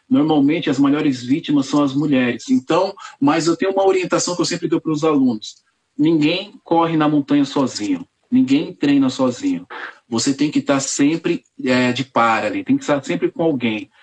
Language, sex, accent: Portuguese, male, Brazilian